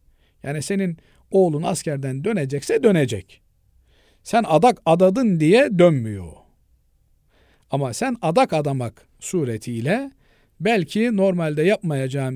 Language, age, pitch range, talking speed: Turkish, 50-69, 120-160 Hz, 90 wpm